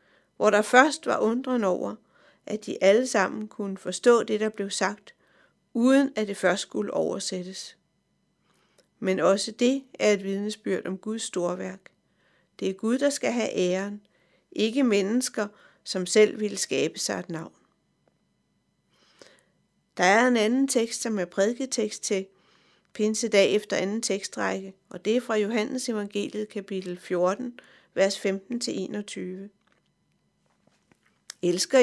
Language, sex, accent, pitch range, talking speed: Danish, female, native, 195-240 Hz, 135 wpm